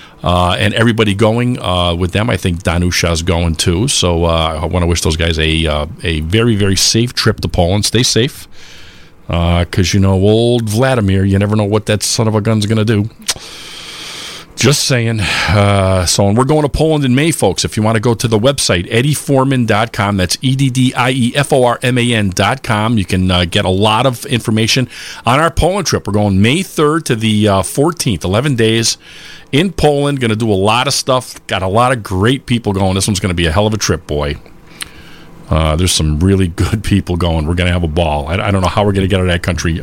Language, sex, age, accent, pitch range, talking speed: English, male, 40-59, American, 95-120 Hz, 220 wpm